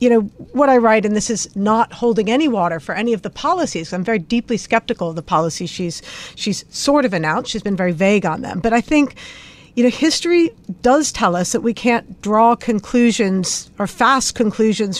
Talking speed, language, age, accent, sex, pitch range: 210 wpm, English, 50-69, American, female, 195-235 Hz